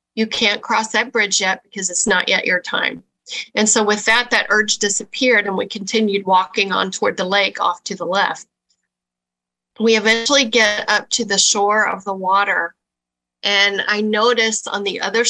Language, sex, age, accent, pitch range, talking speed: English, female, 40-59, American, 190-225 Hz, 185 wpm